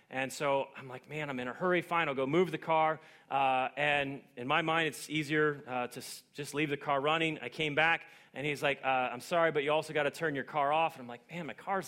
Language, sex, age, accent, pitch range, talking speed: English, male, 30-49, American, 140-180 Hz, 270 wpm